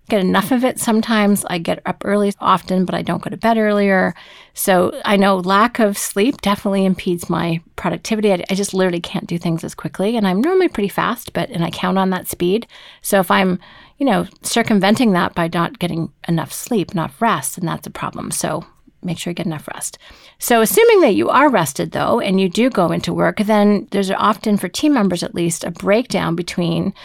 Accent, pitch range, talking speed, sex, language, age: American, 180-225 Hz, 215 wpm, female, English, 40-59